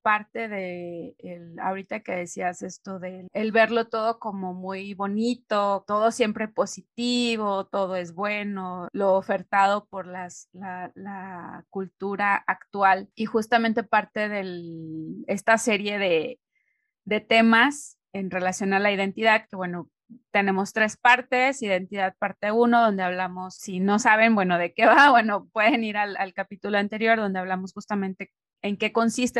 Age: 30-49